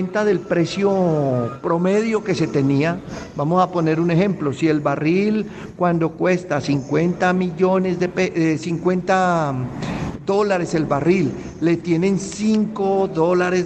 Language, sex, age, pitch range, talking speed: Spanish, male, 50-69, 160-205 Hz, 125 wpm